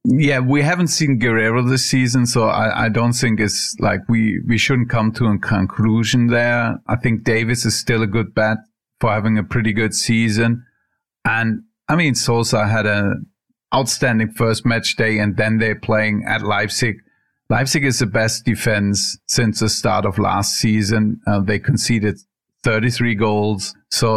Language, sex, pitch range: English, male, 105-125 Hz